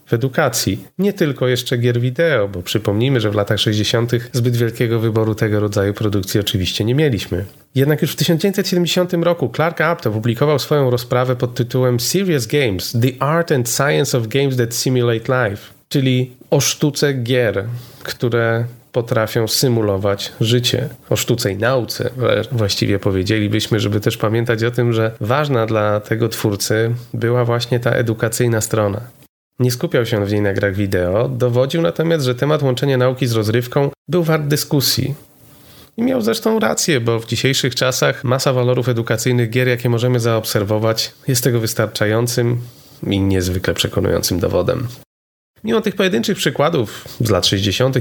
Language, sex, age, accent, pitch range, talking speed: Polish, male, 30-49, native, 110-140 Hz, 155 wpm